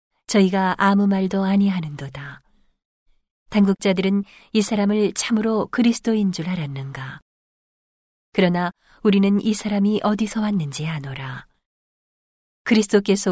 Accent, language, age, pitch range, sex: native, Korean, 40-59, 170-205 Hz, female